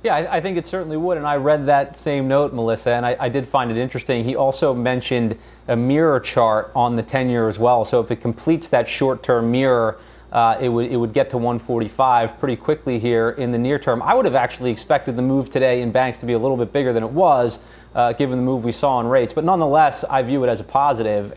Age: 30-49